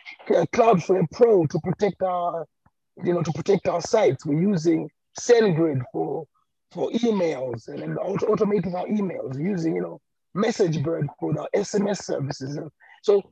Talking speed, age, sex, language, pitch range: 145 wpm, 30-49, male, English, 160-205 Hz